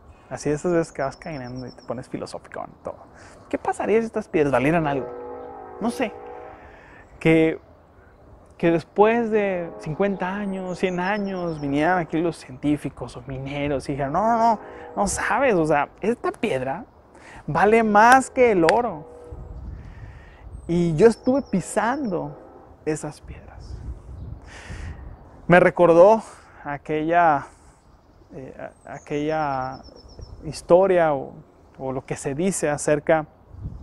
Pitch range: 135-180 Hz